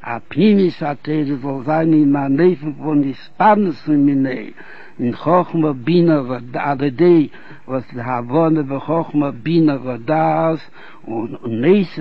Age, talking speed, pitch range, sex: 60-79, 110 wpm, 145-170 Hz, male